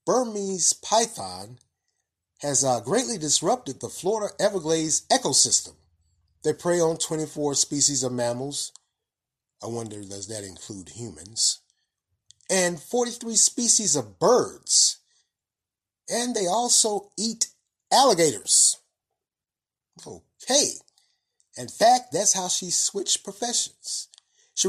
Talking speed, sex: 100 wpm, male